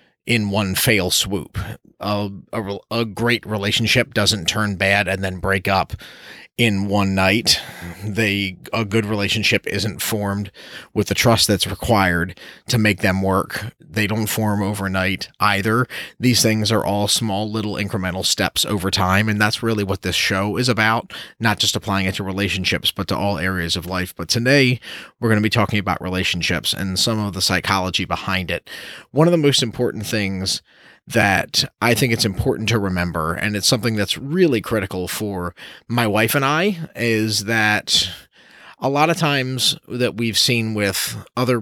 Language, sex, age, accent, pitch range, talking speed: English, male, 30-49, American, 95-115 Hz, 175 wpm